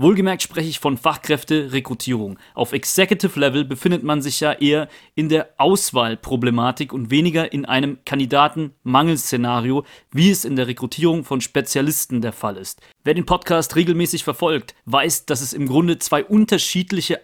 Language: German